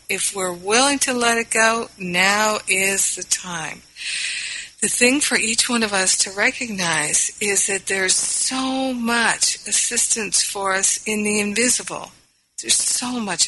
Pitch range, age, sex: 185-220 Hz, 50-69, female